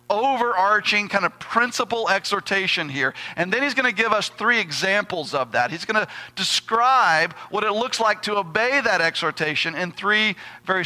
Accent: American